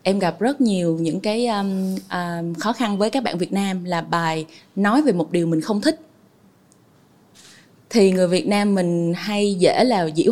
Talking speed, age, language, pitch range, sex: 190 wpm, 20-39, Vietnamese, 175-235 Hz, female